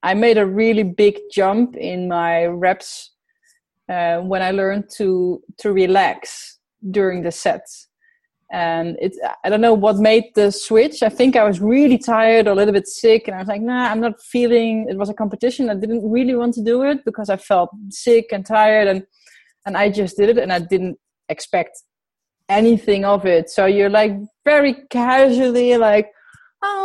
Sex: female